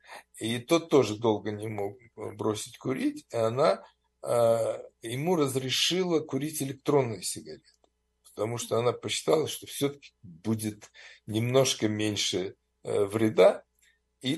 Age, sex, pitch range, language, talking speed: 60-79, male, 110-150 Hz, Russian, 115 wpm